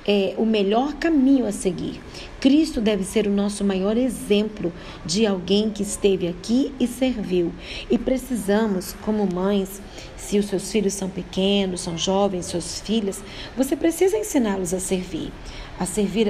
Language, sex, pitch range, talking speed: Portuguese, female, 190-220 Hz, 150 wpm